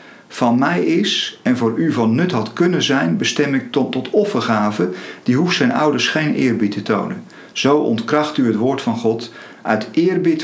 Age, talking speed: 50-69, 190 wpm